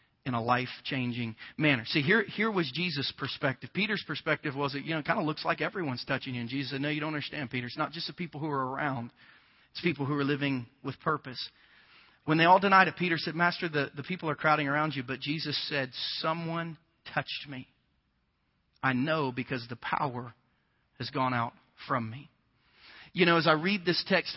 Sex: male